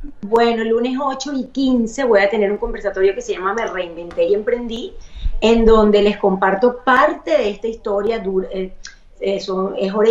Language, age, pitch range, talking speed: Spanish, 30-49, 200-250 Hz, 165 wpm